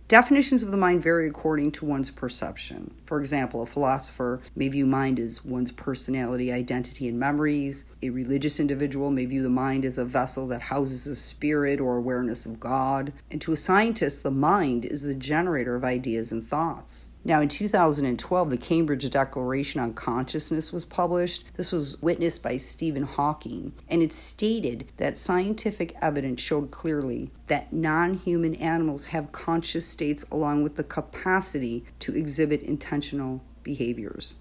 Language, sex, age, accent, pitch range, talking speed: English, female, 50-69, American, 135-165 Hz, 160 wpm